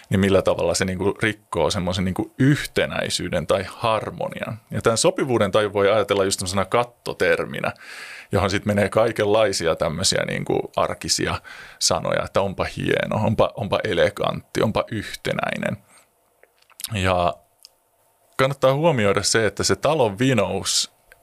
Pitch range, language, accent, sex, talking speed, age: 100-135 Hz, Finnish, native, male, 115 wpm, 30-49